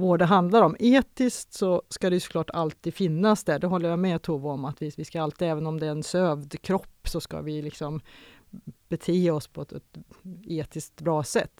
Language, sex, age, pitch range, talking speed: Swedish, female, 30-49, 155-195 Hz, 220 wpm